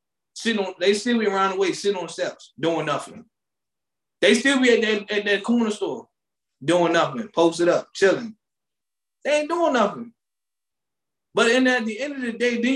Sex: male